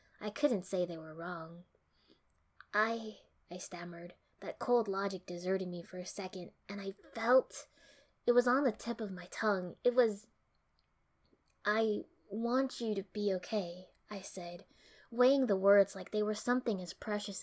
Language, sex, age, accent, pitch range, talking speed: English, female, 10-29, American, 180-215 Hz, 160 wpm